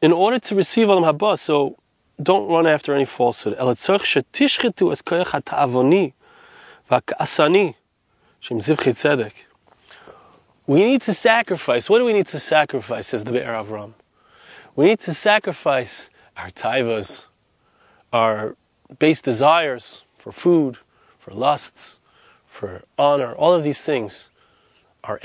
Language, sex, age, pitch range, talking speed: English, male, 30-49, 140-205 Hz, 105 wpm